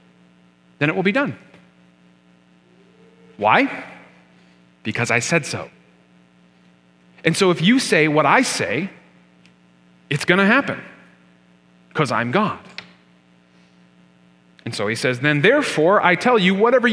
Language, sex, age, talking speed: English, male, 40-59, 125 wpm